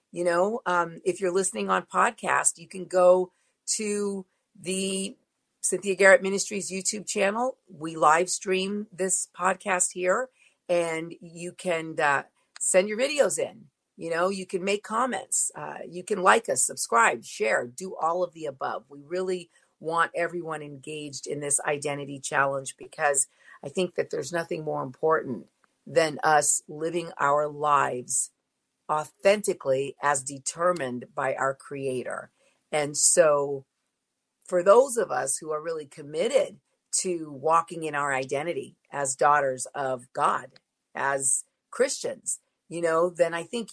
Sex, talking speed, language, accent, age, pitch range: female, 145 wpm, English, American, 50-69, 145-190 Hz